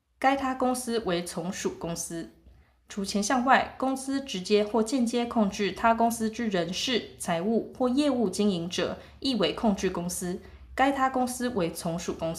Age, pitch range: 20-39, 185-245 Hz